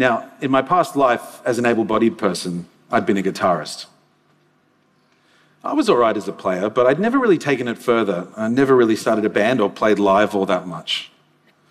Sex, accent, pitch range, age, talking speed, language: male, Australian, 110-140 Hz, 40-59, 200 wpm, Portuguese